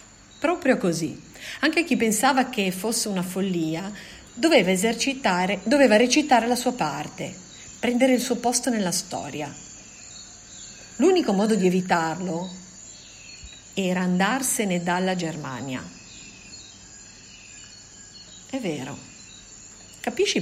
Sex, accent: female, native